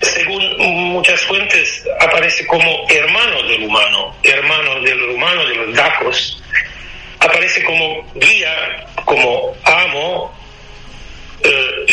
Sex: male